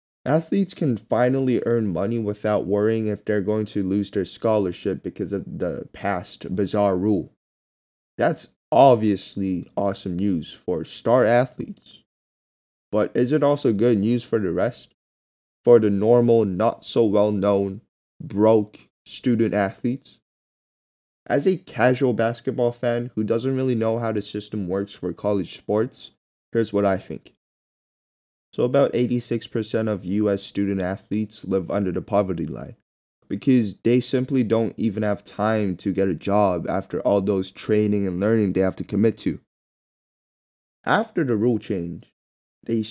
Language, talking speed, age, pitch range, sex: English, 145 wpm, 20-39, 100-120 Hz, male